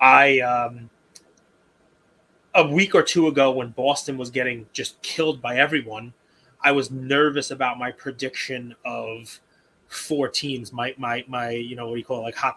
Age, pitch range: 20-39, 130-160 Hz